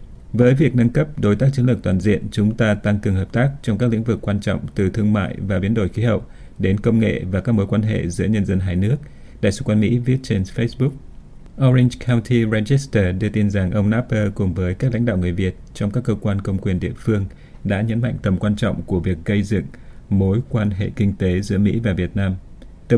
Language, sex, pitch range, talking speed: Vietnamese, male, 95-115 Hz, 245 wpm